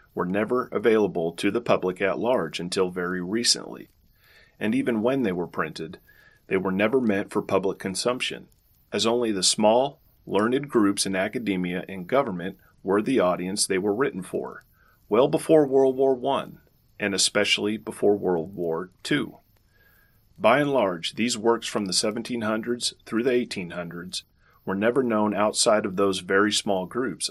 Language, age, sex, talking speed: English, 40-59, male, 160 wpm